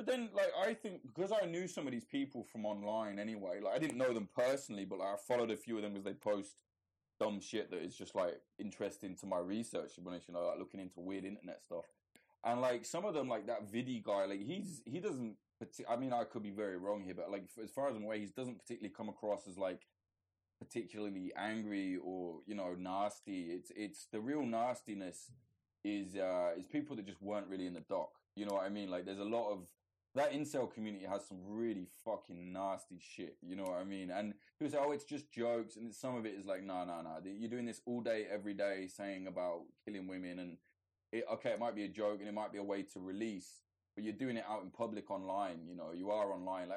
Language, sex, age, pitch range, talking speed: English, male, 20-39, 95-120 Hz, 240 wpm